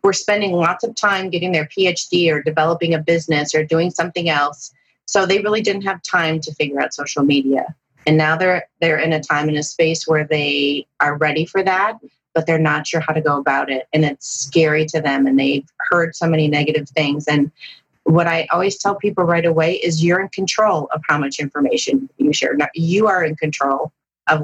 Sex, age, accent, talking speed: female, 30-49, American, 215 wpm